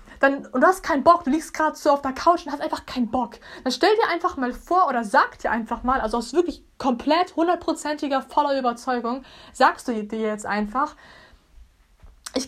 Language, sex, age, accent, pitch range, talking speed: German, female, 20-39, German, 235-300 Hz, 195 wpm